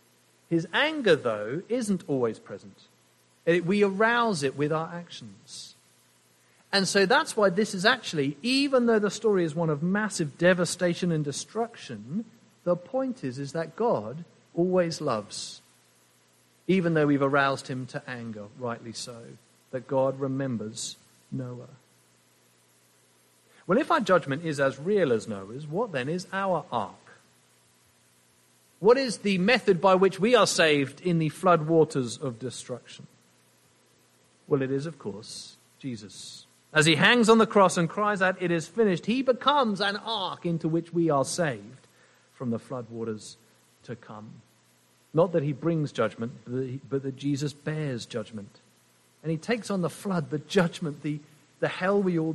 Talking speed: 155 wpm